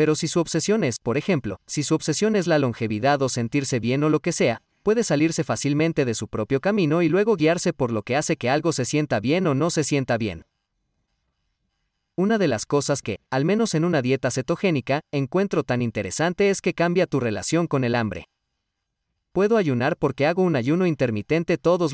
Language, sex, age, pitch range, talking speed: Spanish, male, 40-59, 125-170 Hz, 200 wpm